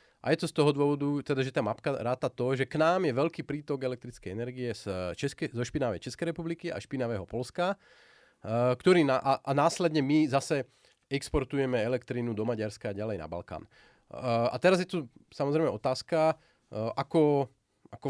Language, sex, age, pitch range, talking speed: Slovak, male, 30-49, 120-155 Hz, 180 wpm